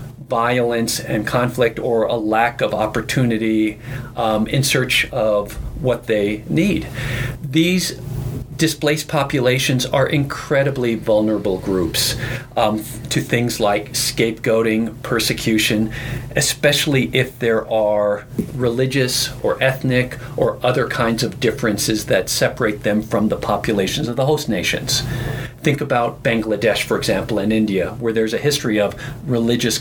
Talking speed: 125 wpm